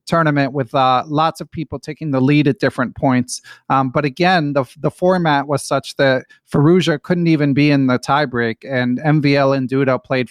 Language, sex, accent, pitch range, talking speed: English, male, American, 125-150 Hz, 190 wpm